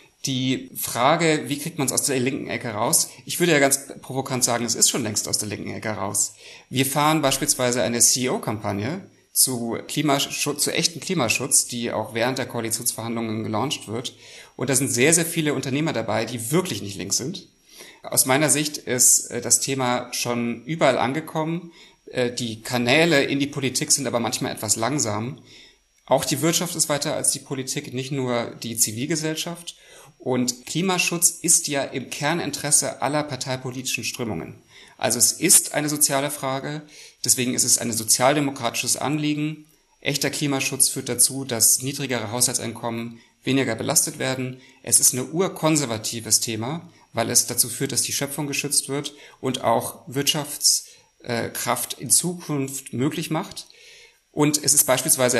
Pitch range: 120-150 Hz